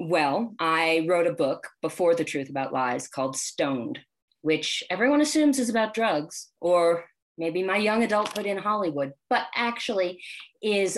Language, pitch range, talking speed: English, 150-195 Hz, 155 wpm